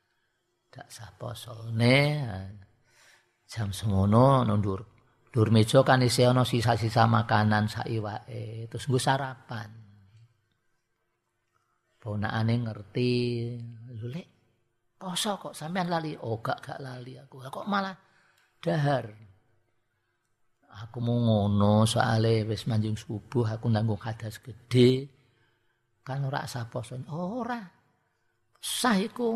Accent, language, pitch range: native, Indonesian, 110-140 Hz